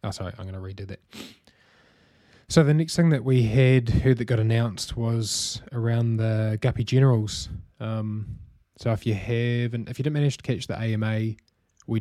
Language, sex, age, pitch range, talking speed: English, male, 20-39, 105-120 Hz, 185 wpm